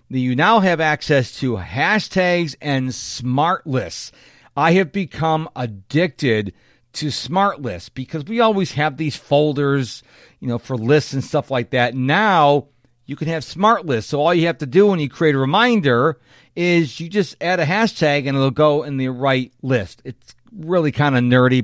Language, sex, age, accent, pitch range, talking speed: English, male, 50-69, American, 120-155 Hz, 180 wpm